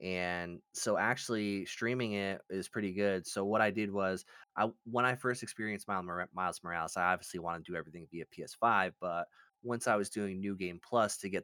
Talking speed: 200 wpm